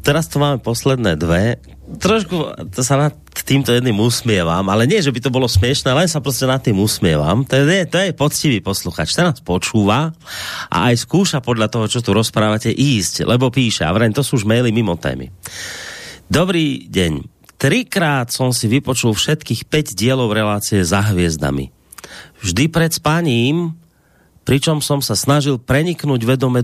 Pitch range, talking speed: 110-145 Hz, 165 wpm